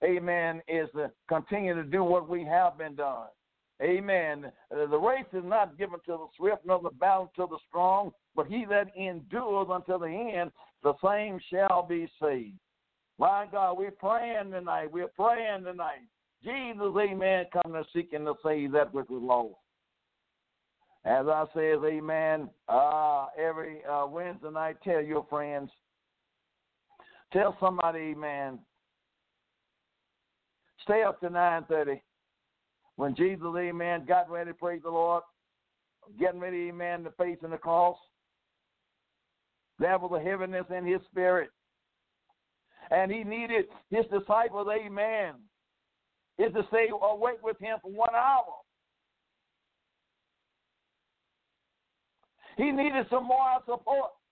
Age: 60-79